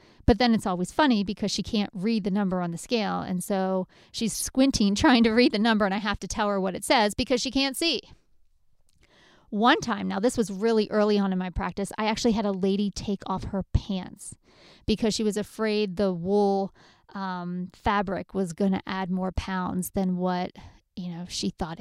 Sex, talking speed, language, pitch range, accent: female, 210 wpm, English, 195-235 Hz, American